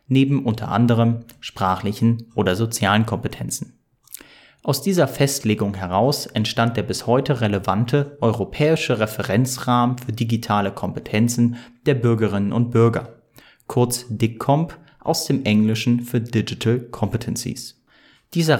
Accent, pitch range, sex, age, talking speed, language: German, 110-130 Hz, male, 30-49, 110 wpm, German